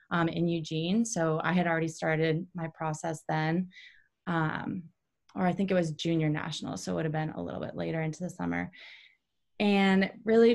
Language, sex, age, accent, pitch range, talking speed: English, female, 20-39, American, 160-190 Hz, 190 wpm